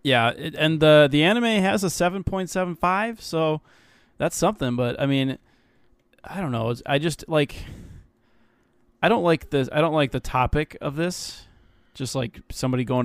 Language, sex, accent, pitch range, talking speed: English, male, American, 120-140 Hz, 160 wpm